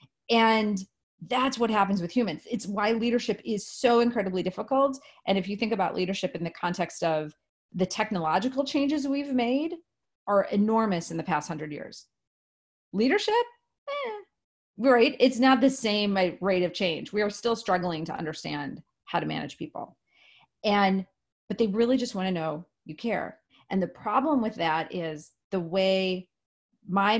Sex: female